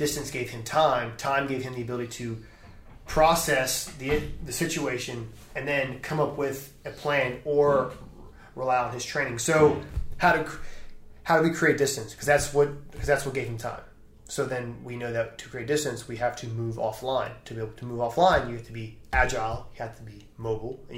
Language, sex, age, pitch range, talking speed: English, male, 20-39, 115-135 Hz, 210 wpm